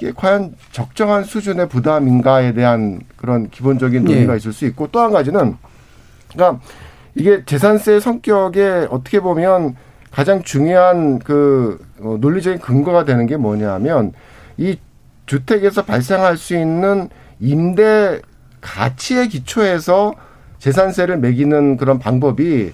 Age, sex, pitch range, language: 50-69, male, 135-195 Hz, Korean